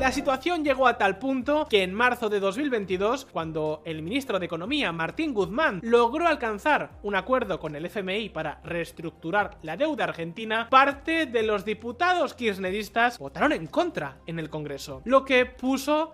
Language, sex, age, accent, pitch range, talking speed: Spanish, male, 20-39, Spanish, 165-255 Hz, 165 wpm